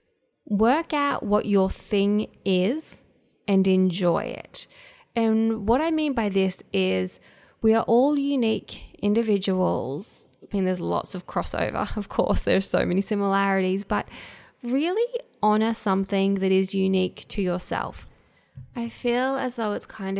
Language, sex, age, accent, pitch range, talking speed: English, female, 20-39, Australian, 185-220 Hz, 145 wpm